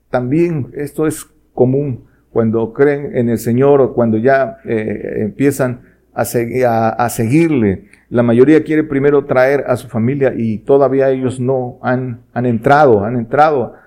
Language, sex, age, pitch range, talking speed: Spanish, male, 50-69, 115-145 Hz, 145 wpm